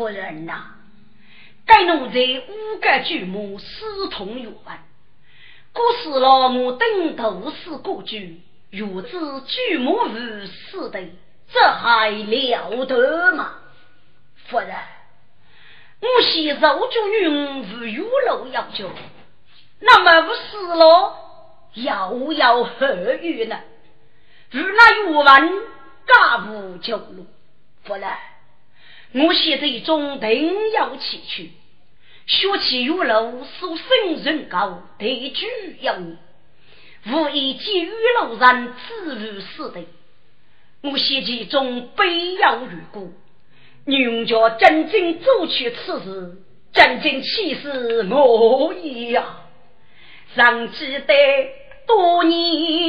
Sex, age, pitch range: female, 40-59, 240-370 Hz